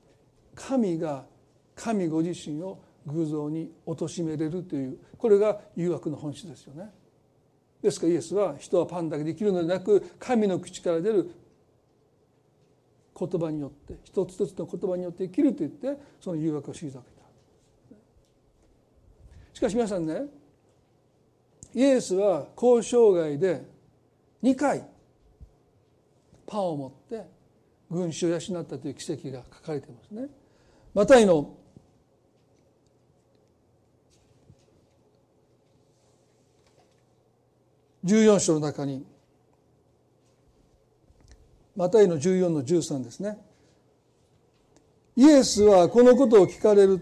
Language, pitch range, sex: Japanese, 145-200 Hz, male